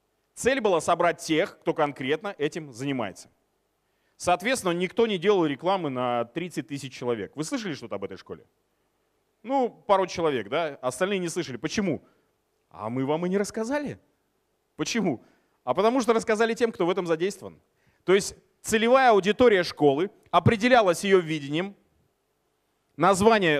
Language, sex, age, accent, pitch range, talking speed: Russian, male, 30-49, native, 150-195 Hz, 140 wpm